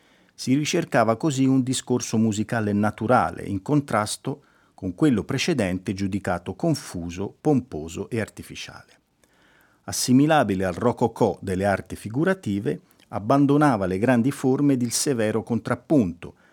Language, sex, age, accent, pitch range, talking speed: Italian, male, 50-69, native, 95-140 Hz, 115 wpm